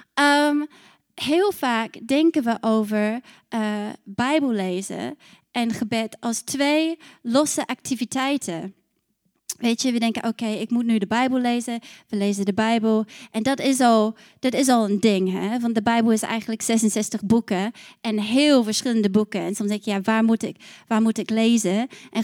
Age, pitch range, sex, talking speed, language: 20-39, 220-270 Hz, female, 160 wpm, Dutch